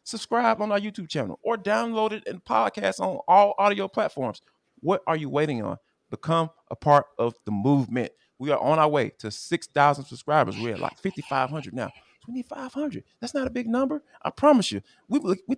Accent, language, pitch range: American, English, 140-235 Hz